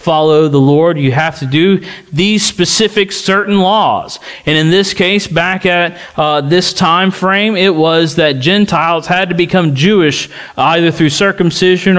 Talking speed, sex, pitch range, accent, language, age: 160 wpm, male, 160-200 Hz, American, English, 40-59